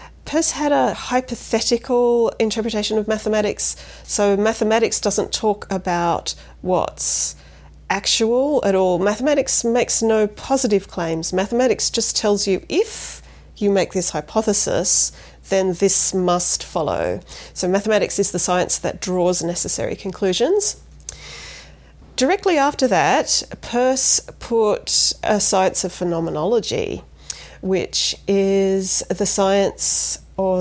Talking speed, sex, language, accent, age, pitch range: 110 wpm, female, English, Australian, 40-59, 175-220 Hz